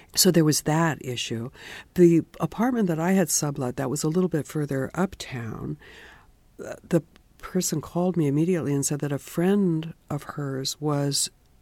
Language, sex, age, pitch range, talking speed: English, female, 60-79, 135-175 Hz, 160 wpm